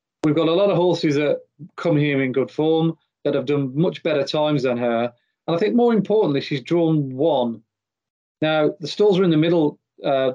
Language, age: English, 40-59